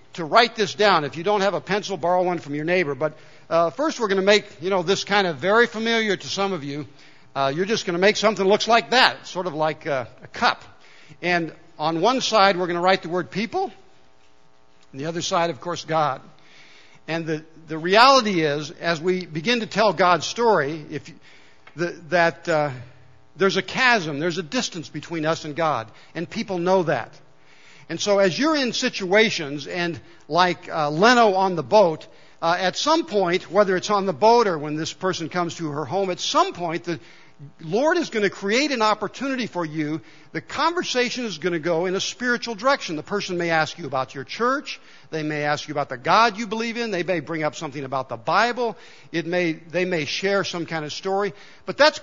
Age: 60-79